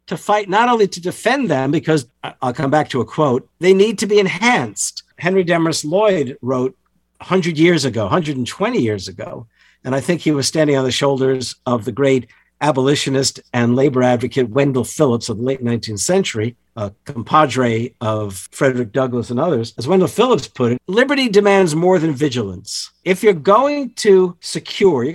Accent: American